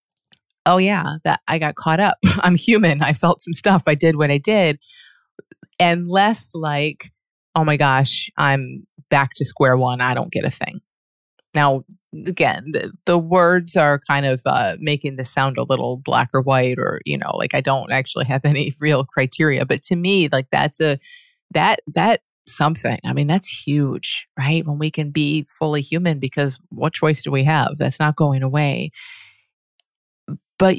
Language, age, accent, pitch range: English, 30-49, American, 140-175 Hz